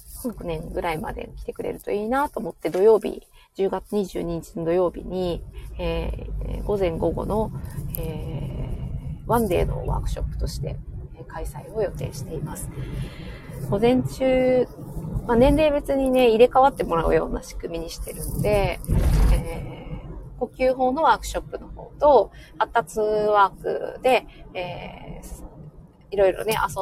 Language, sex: Japanese, female